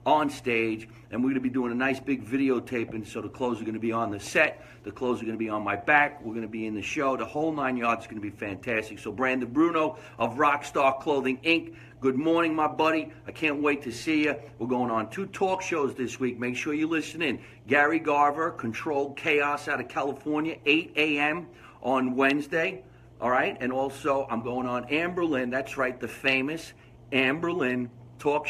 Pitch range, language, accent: 120-150 Hz, English, American